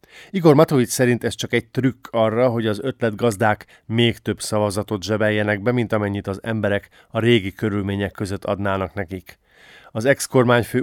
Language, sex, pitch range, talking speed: Hungarian, male, 105-120 Hz, 160 wpm